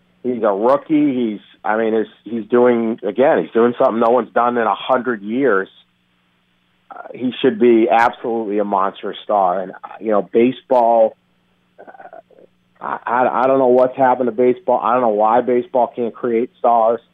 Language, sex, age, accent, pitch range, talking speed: English, male, 40-59, American, 95-120 Hz, 170 wpm